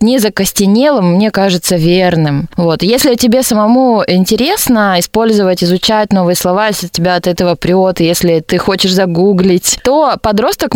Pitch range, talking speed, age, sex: 175-220 Hz, 140 wpm, 20-39, female